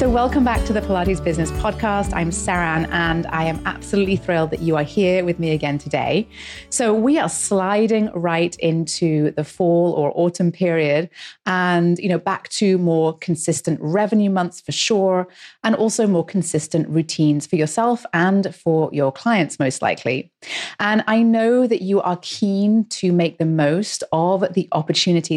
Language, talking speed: English, 170 wpm